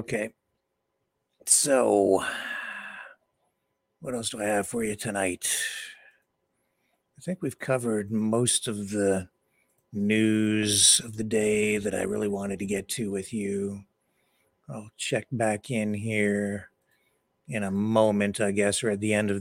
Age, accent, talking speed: 60-79, American, 140 wpm